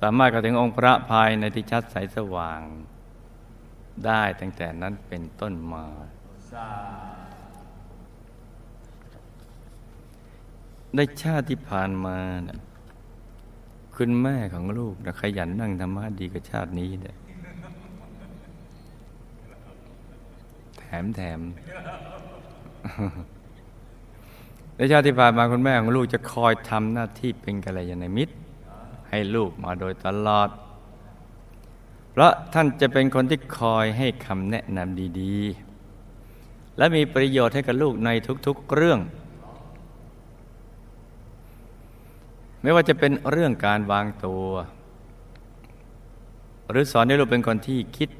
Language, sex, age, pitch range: Thai, male, 60-79, 100-120 Hz